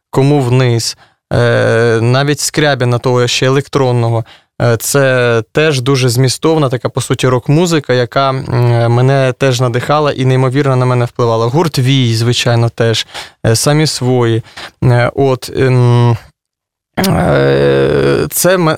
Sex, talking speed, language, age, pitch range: male, 105 wpm, Russian, 20-39, 120-145 Hz